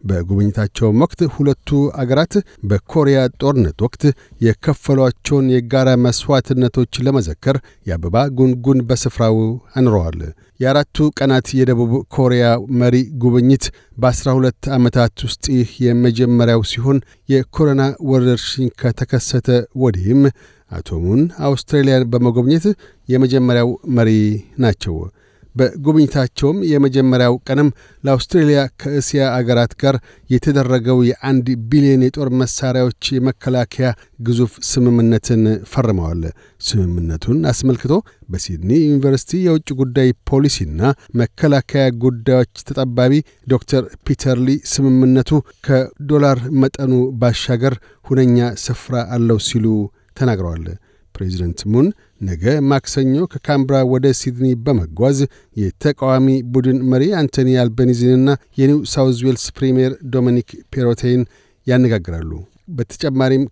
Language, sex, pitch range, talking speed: Amharic, male, 115-135 Hz, 90 wpm